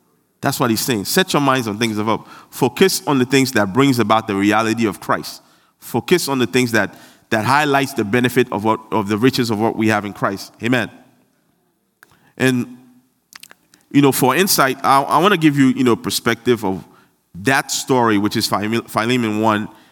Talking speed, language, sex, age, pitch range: 190 wpm, English, male, 30-49, 115-140 Hz